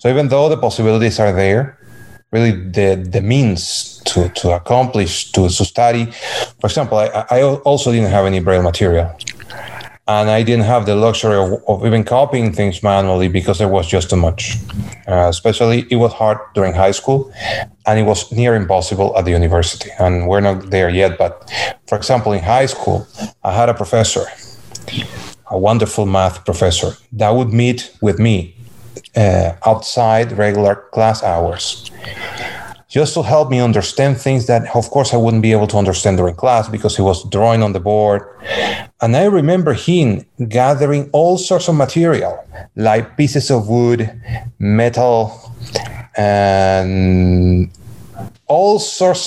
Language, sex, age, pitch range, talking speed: English, male, 30-49, 100-120 Hz, 160 wpm